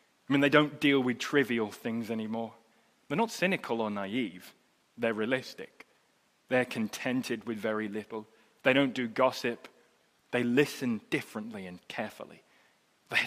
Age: 20-39